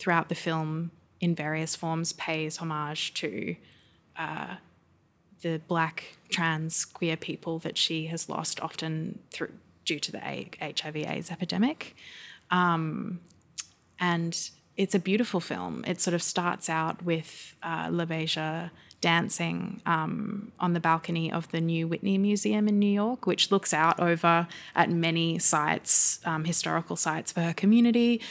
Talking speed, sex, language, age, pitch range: 140 wpm, female, English, 20-39, 160-180 Hz